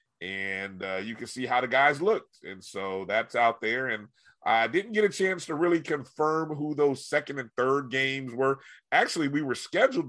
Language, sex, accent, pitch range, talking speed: English, male, American, 110-145 Hz, 200 wpm